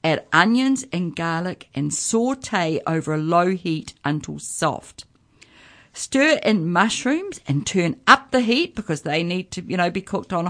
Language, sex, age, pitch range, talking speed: English, female, 50-69, 155-210 Hz, 165 wpm